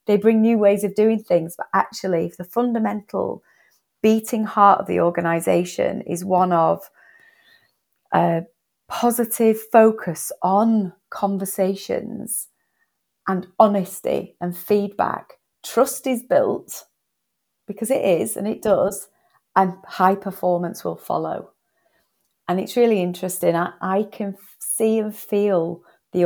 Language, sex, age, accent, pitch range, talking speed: English, female, 30-49, British, 170-210 Hz, 125 wpm